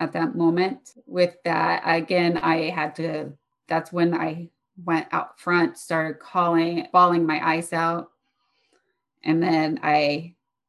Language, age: English, 30-49